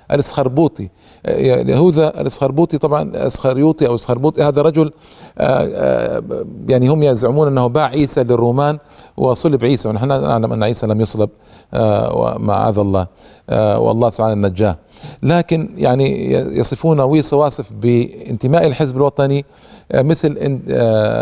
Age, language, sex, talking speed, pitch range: 40-59, Arabic, male, 105 wpm, 115-140 Hz